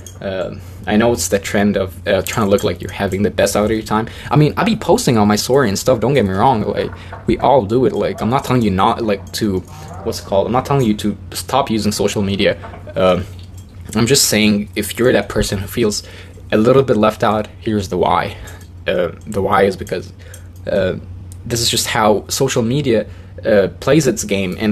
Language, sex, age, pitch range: English, male, 20-39, 95-115 Hz